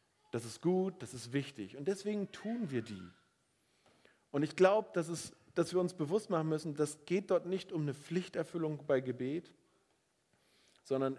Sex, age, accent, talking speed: male, 40-59, German, 160 wpm